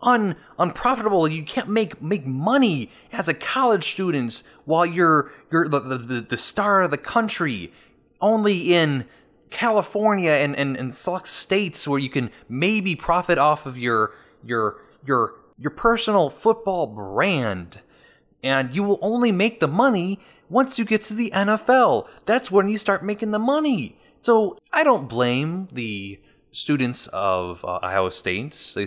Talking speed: 160 wpm